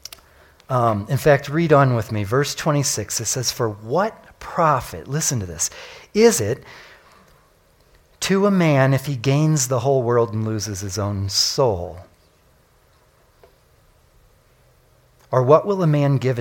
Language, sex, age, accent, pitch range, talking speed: English, male, 40-59, American, 125-155 Hz, 145 wpm